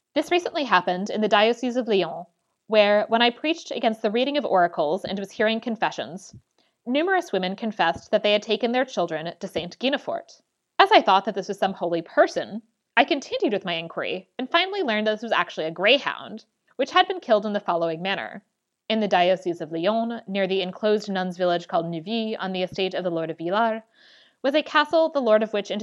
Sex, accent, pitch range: female, American, 180-230 Hz